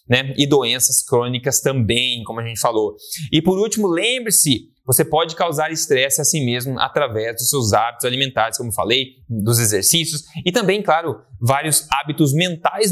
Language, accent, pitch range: Portuguese, Brazilian, 125-165 Hz